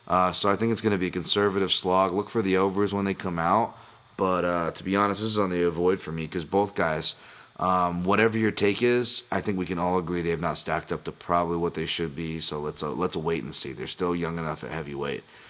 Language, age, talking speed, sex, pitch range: English, 30-49, 265 wpm, male, 85-100 Hz